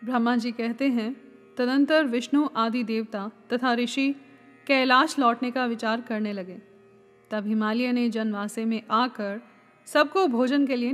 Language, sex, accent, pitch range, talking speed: Hindi, female, native, 225-260 Hz, 145 wpm